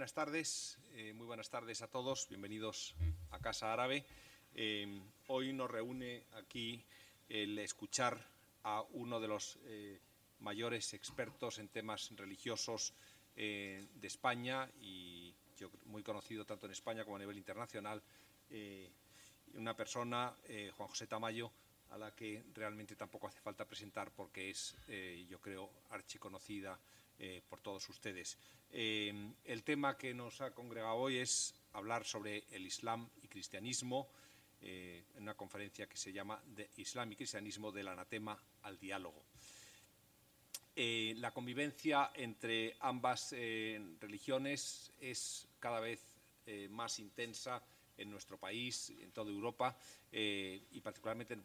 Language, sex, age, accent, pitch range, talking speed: Spanish, male, 40-59, Spanish, 105-120 Hz, 135 wpm